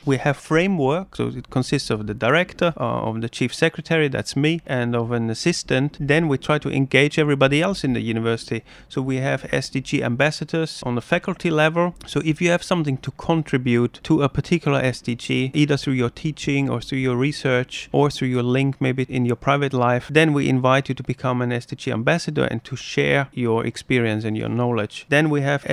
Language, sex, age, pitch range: Chinese, male, 30-49, 125-155 Hz